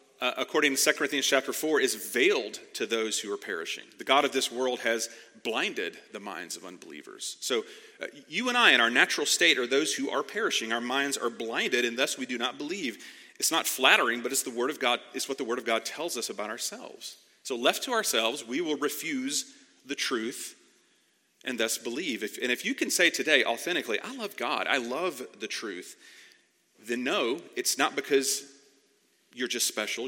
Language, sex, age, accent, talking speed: English, male, 40-59, American, 195 wpm